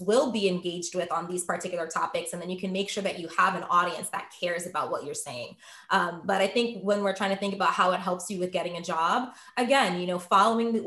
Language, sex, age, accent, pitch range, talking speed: English, female, 20-39, American, 185-225 Hz, 265 wpm